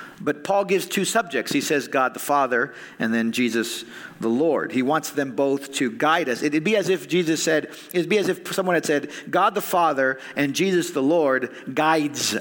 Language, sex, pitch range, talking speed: English, male, 135-185 Hz, 210 wpm